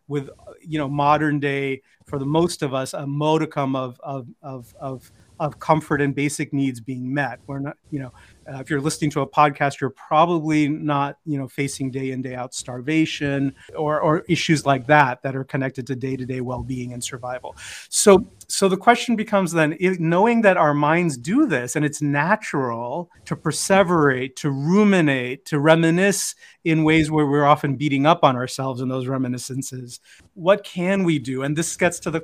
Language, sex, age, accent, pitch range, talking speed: English, male, 30-49, American, 135-165 Hz, 190 wpm